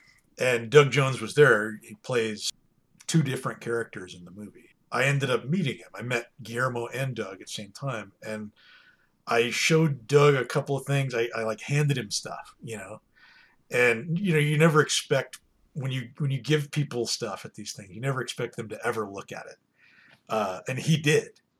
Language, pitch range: English, 115-145 Hz